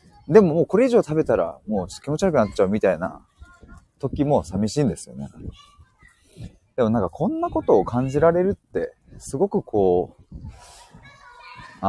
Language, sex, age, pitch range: Japanese, male, 30-49, 95-160 Hz